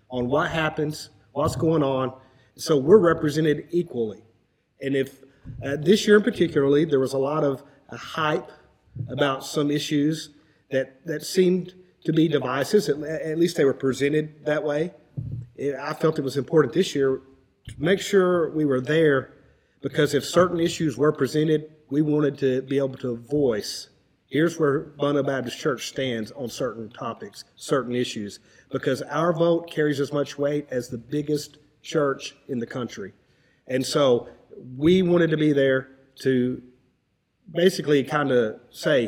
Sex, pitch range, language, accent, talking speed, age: male, 130-160 Hz, English, American, 160 wpm, 50-69